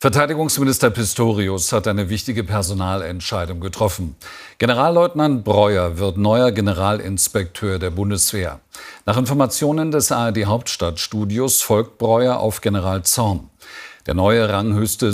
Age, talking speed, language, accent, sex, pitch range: 50-69, 105 wpm, German, German, male, 95-125 Hz